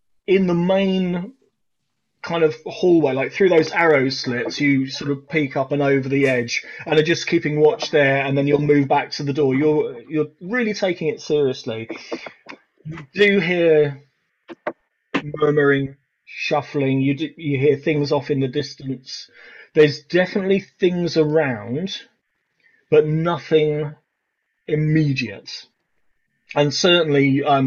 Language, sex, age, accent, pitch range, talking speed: English, male, 30-49, British, 135-160 Hz, 140 wpm